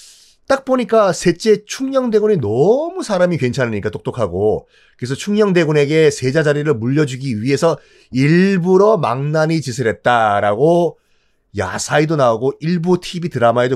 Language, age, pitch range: Korean, 30-49, 130-190 Hz